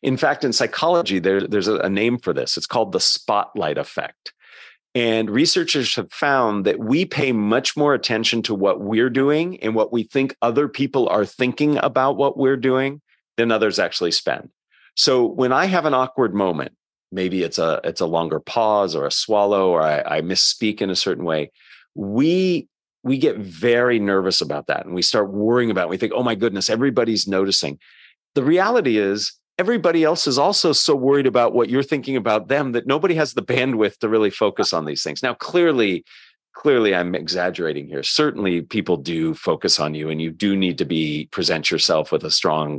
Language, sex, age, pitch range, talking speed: English, male, 40-59, 95-140 Hz, 195 wpm